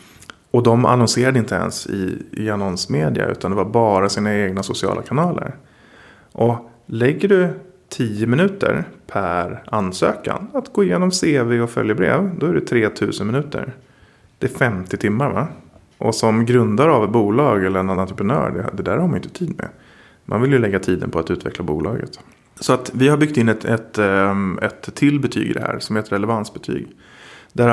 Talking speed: 185 wpm